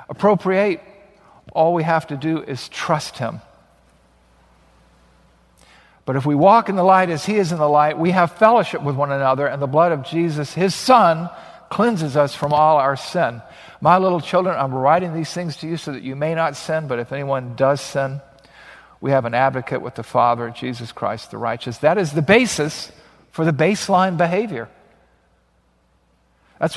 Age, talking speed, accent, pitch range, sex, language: 50-69, 180 wpm, American, 130-170 Hz, male, English